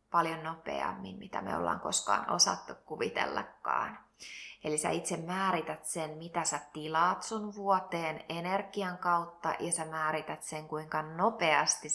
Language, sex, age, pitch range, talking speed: Finnish, female, 20-39, 160-195 Hz, 130 wpm